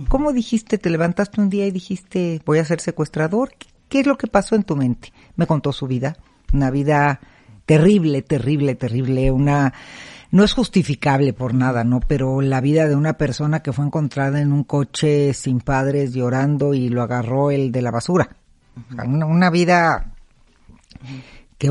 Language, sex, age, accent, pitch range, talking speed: Spanish, female, 50-69, Mexican, 130-170 Hz, 170 wpm